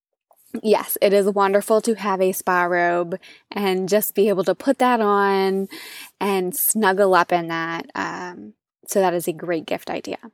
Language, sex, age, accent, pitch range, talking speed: English, female, 20-39, American, 175-210 Hz, 175 wpm